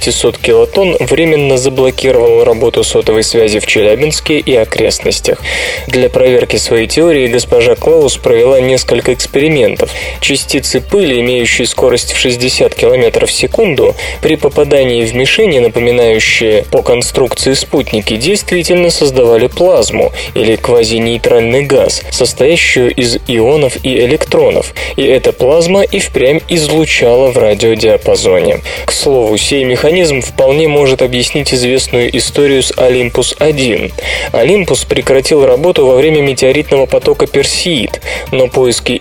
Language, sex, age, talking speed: Russian, male, 20-39, 120 wpm